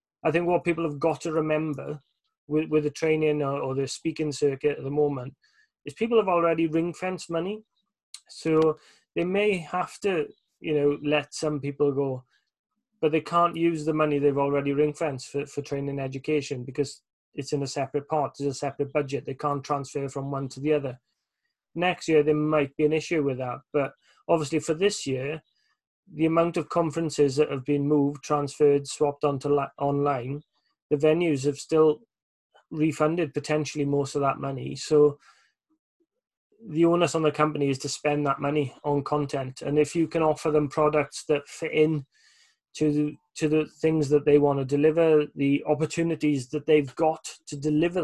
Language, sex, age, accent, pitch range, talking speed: English, male, 30-49, British, 145-160 Hz, 180 wpm